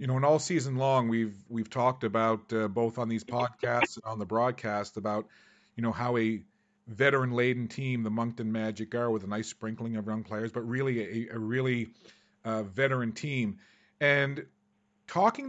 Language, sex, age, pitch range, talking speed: English, male, 40-59, 115-140 Hz, 185 wpm